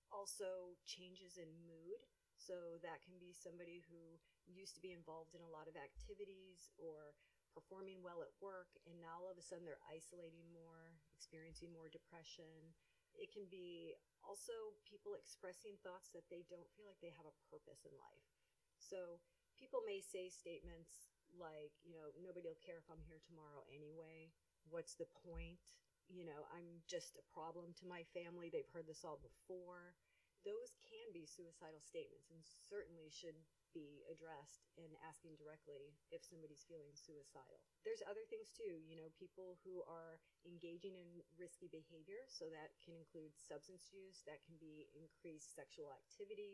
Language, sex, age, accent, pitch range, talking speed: English, female, 40-59, American, 160-185 Hz, 165 wpm